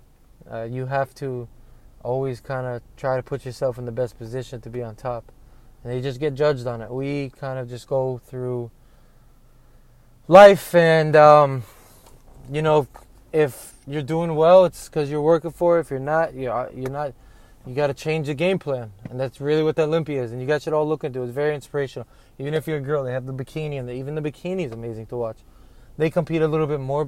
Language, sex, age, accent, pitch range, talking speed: English, male, 20-39, American, 125-155 Hz, 230 wpm